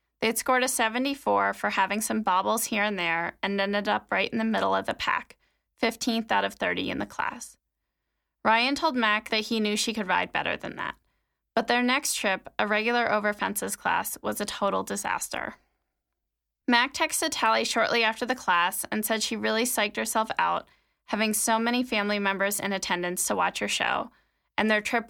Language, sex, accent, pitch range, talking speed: English, female, American, 200-245 Hz, 195 wpm